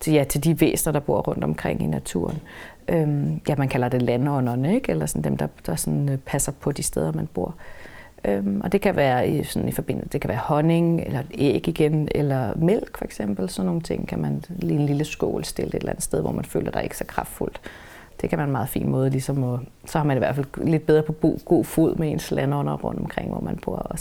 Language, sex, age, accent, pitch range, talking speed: Danish, female, 30-49, native, 135-160 Hz, 250 wpm